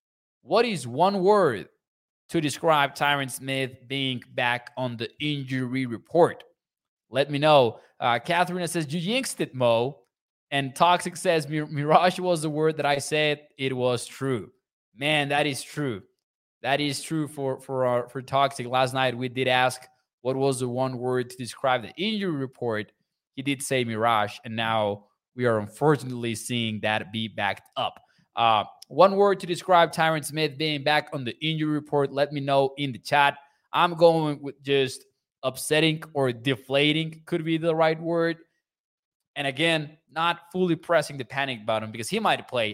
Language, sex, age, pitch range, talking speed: English, male, 20-39, 125-155 Hz, 170 wpm